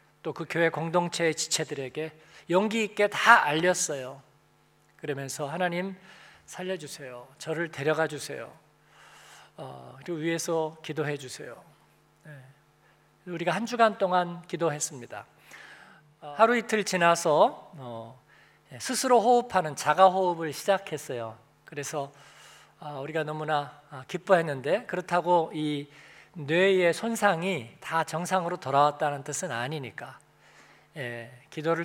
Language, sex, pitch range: Korean, male, 145-180 Hz